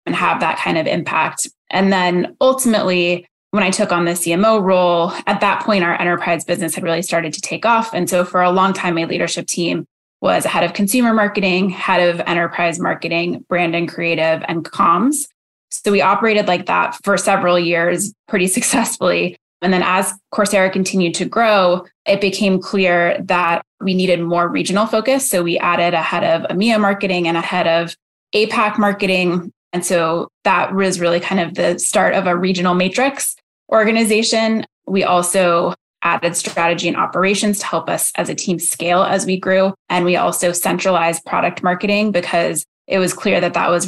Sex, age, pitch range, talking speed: female, 20-39, 170-195 Hz, 185 wpm